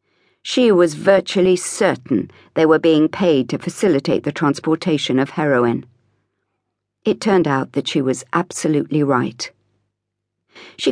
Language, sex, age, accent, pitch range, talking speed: English, female, 50-69, British, 135-195 Hz, 125 wpm